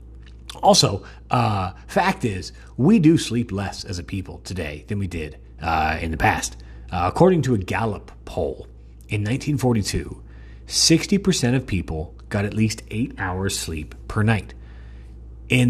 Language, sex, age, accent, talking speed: English, male, 30-49, American, 150 wpm